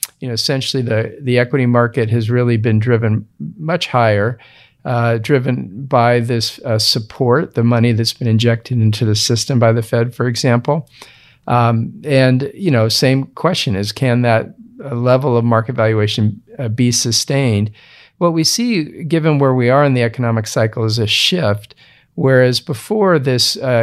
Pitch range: 115-135 Hz